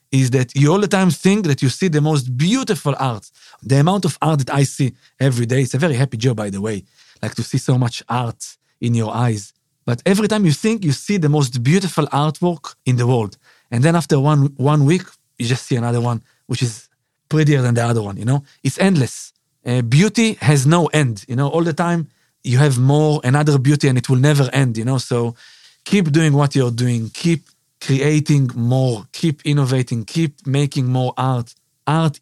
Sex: male